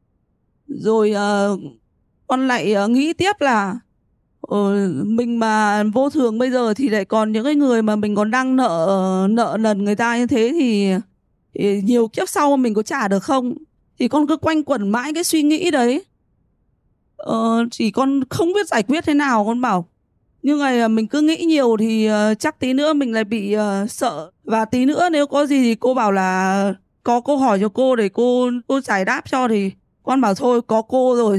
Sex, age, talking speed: female, 20-39, 195 wpm